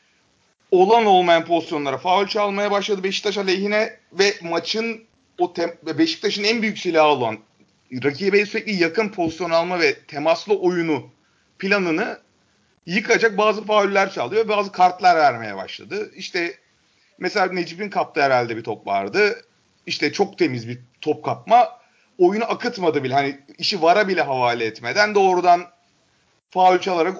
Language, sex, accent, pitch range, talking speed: Turkish, male, native, 160-210 Hz, 135 wpm